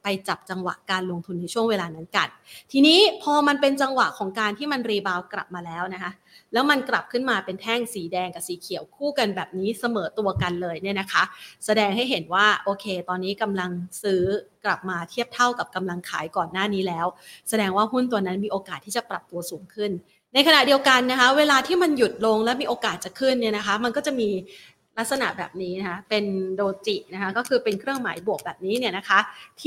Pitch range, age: 195-250 Hz, 30-49